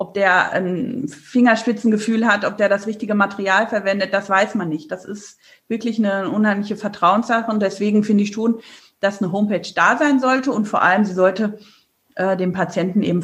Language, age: German, 40-59